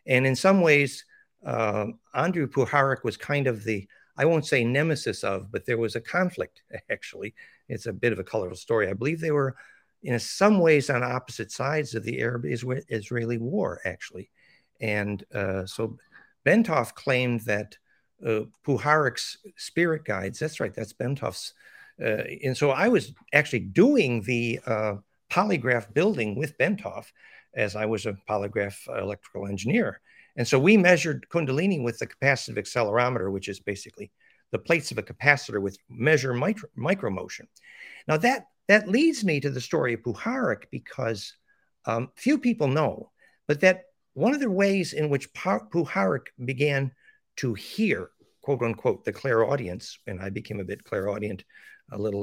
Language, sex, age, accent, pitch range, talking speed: English, male, 60-79, American, 110-175 Hz, 160 wpm